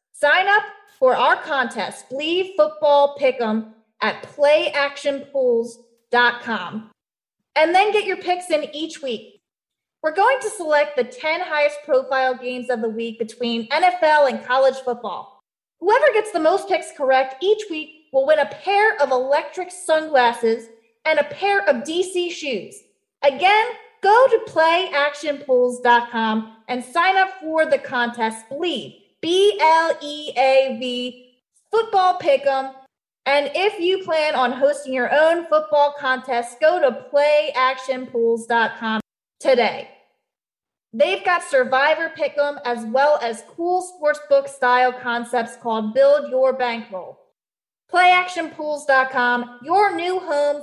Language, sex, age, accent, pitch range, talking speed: English, female, 30-49, American, 245-320 Hz, 120 wpm